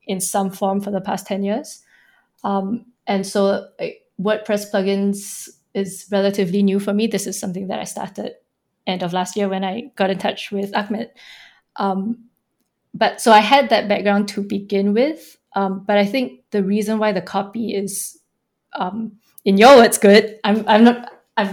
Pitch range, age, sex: 195-225 Hz, 20-39, female